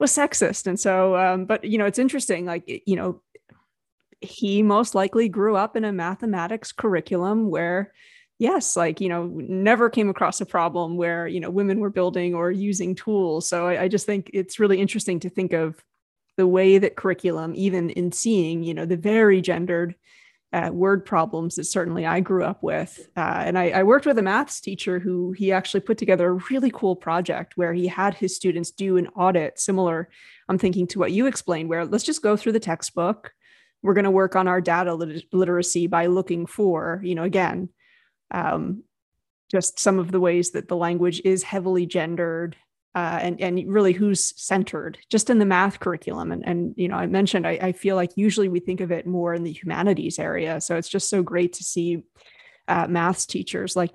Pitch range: 175-205 Hz